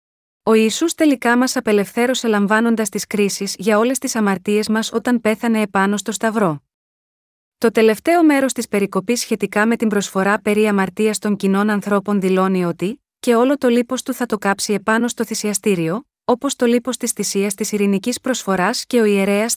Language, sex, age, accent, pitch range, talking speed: Greek, female, 30-49, native, 200-245 Hz, 170 wpm